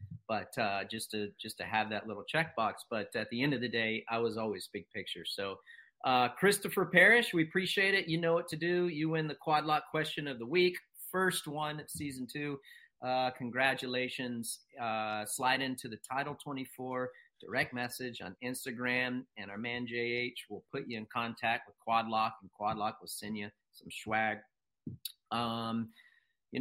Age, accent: 40-59, American